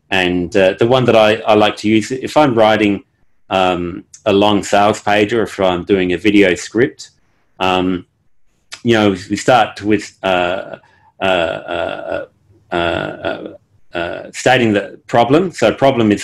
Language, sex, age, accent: English, male, 40-59, Australian